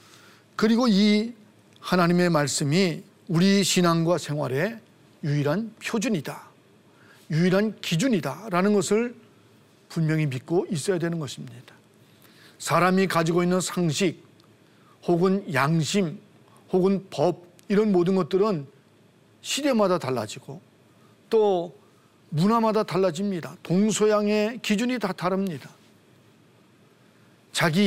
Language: Korean